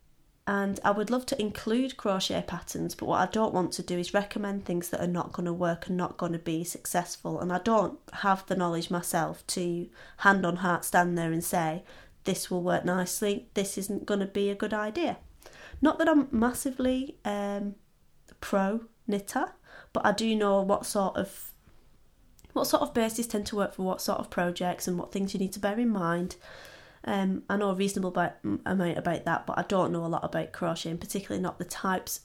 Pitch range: 175-210 Hz